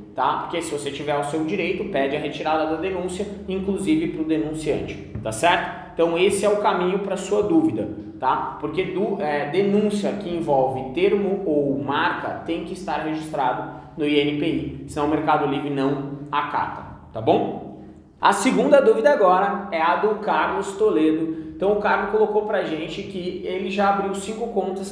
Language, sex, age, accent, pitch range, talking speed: Portuguese, male, 20-39, Brazilian, 155-200 Hz, 175 wpm